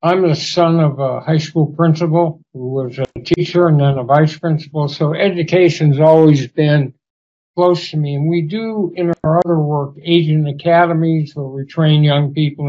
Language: English